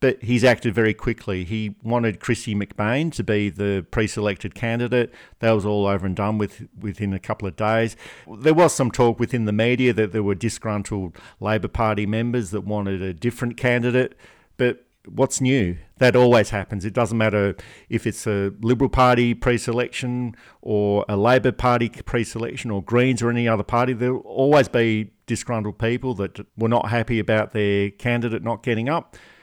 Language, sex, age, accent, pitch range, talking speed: English, male, 50-69, Australian, 105-125 Hz, 175 wpm